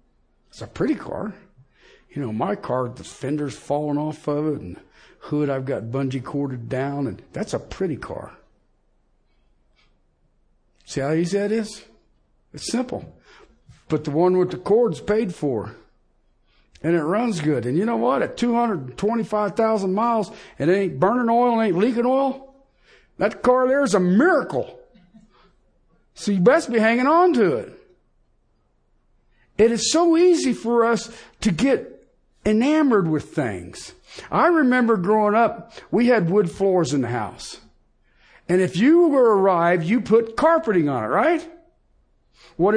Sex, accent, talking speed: male, American, 155 wpm